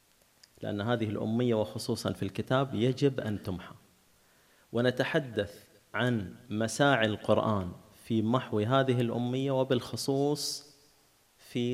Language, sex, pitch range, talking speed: Arabic, male, 100-125 Hz, 95 wpm